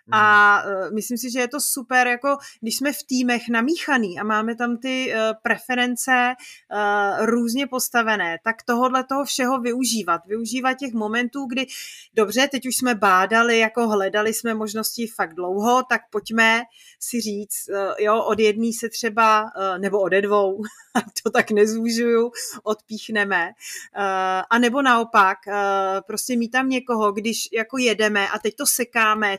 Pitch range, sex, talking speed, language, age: 205-245 Hz, female, 145 wpm, Czech, 30-49